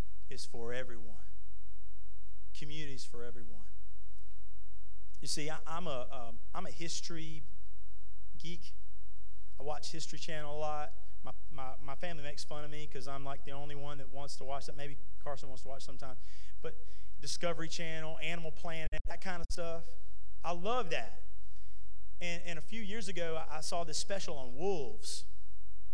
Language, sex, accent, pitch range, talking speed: English, male, American, 95-155 Hz, 165 wpm